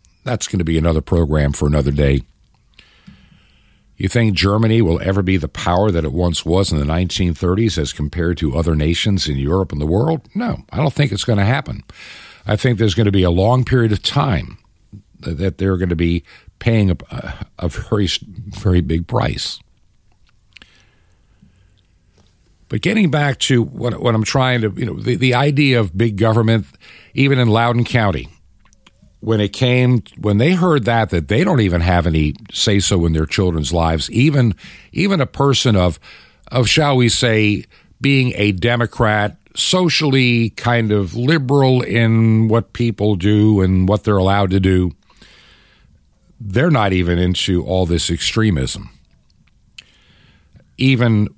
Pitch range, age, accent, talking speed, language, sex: 85-120 Hz, 60-79, American, 160 wpm, English, male